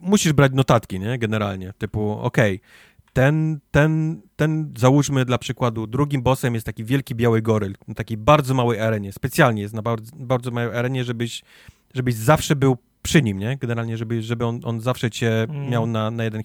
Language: Polish